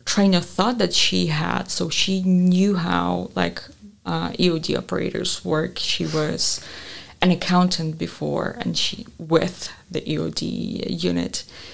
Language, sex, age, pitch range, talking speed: English, female, 20-39, 155-195 Hz, 135 wpm